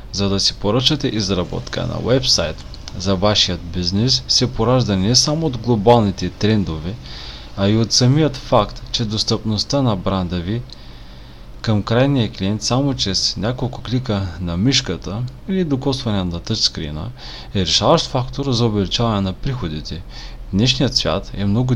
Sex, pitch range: male, 90-125 Hz